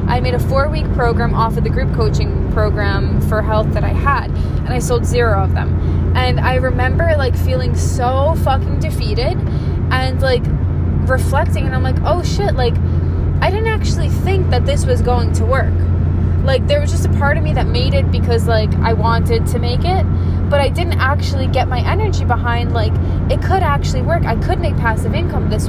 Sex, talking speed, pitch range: female, 200 wpm, 80-90 Hz